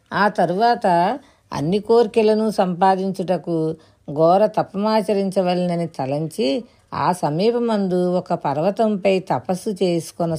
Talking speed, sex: 80 wpm, female